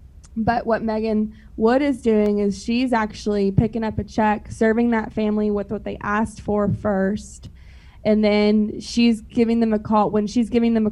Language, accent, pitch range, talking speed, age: English, American, 205-230 Hz, 185 wpm, 20-39